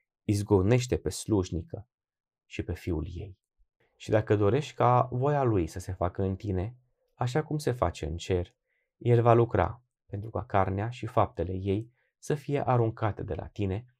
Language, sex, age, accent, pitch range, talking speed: Romanian, male, 20-39, native, 95-125 Hz, 165 wpm